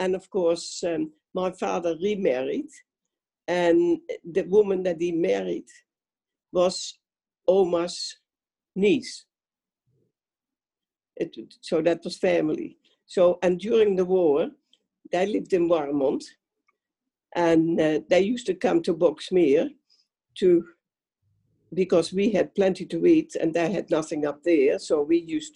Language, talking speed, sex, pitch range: English, 125 wpm, female, 175-285 Hz